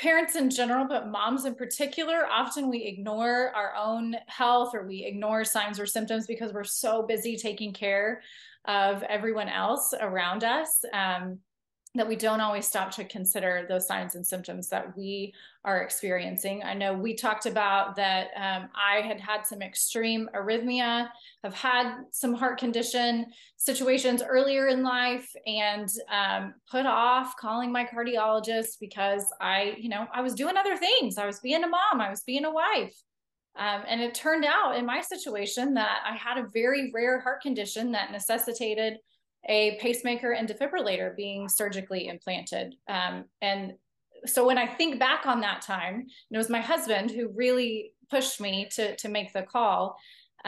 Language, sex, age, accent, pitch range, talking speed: English, female, 20-39, American, 205-250 Hz, 170 wpm